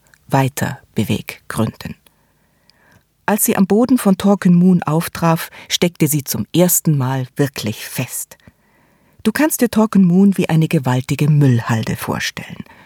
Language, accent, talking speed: German, German, 130 wpm